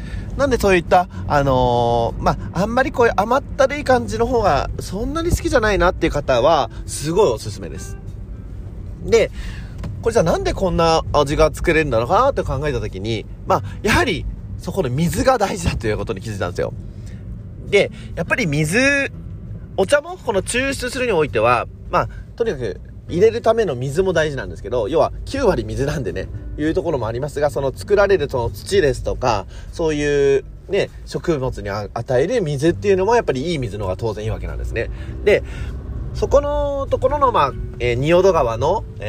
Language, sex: Japanese, male